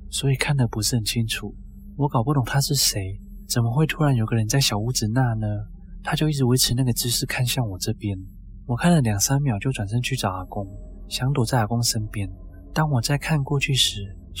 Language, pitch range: Chinese, 100-130 Hz